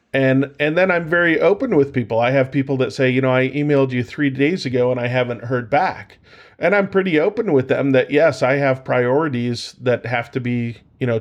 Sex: male